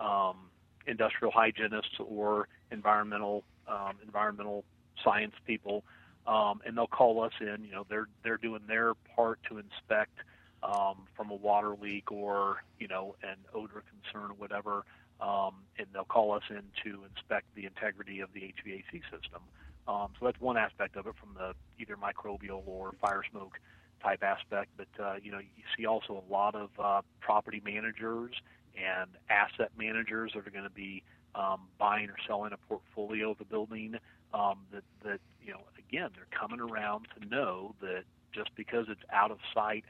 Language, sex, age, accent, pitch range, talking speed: English, male, 40-59, American, 100-110 Hz, 175 wpm